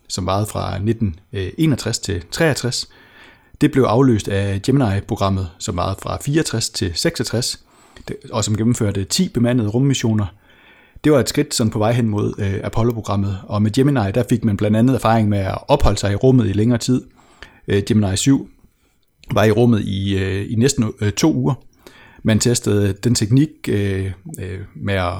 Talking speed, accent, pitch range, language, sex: 150 wpm, native, 100-125 Hz, Danish, male